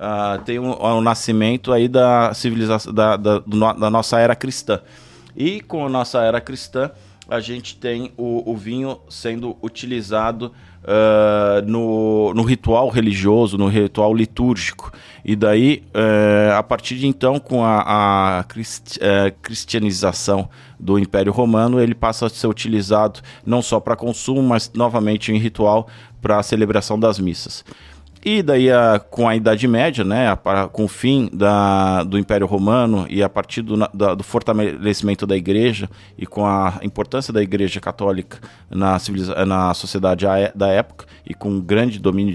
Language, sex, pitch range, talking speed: Portuguese, male, 100-115 Hz, 145 wpm